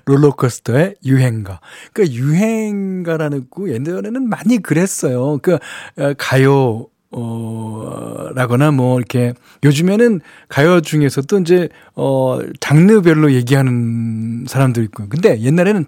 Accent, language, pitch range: native, Korean, 130-180 Hz